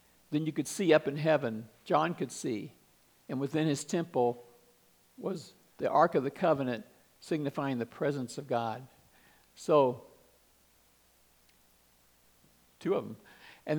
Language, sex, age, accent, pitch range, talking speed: English, male, 60-79, American, 140-195 Hz, 130 wpm